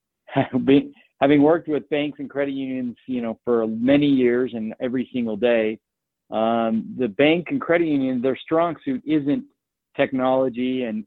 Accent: American